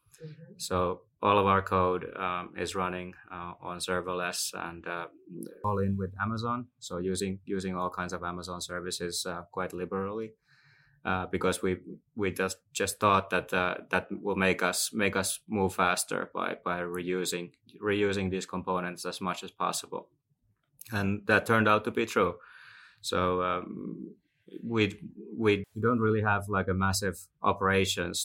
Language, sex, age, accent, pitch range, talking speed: Finnish, male, 20-39, native, 90-100 Hz, 155 wpm